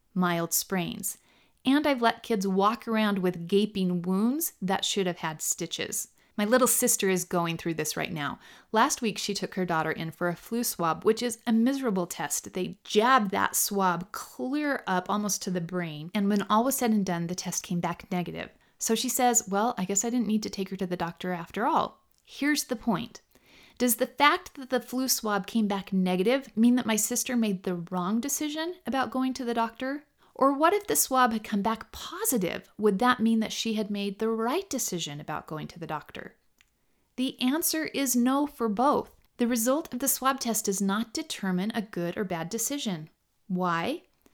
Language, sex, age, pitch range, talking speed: English, female, 30-49, 185-250 Hz, 205 wpm